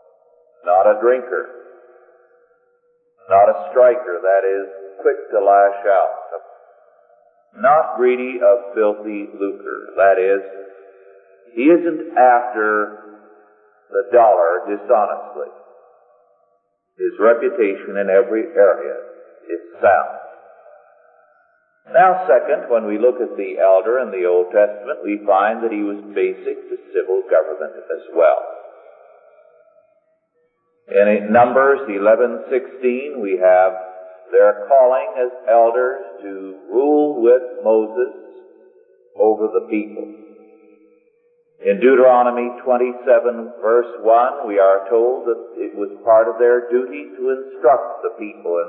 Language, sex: English, male